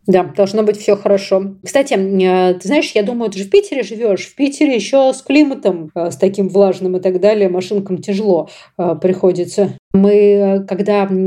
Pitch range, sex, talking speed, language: 180-225 Hz, female, 165 wpm, Russian